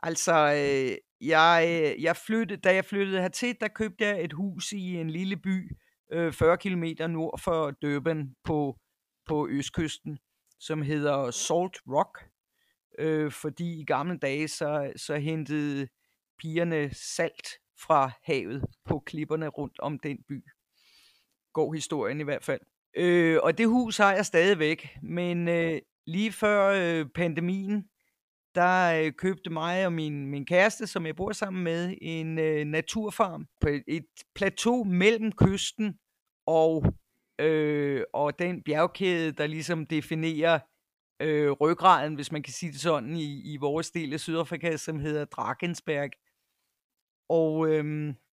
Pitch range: 150-185 Hz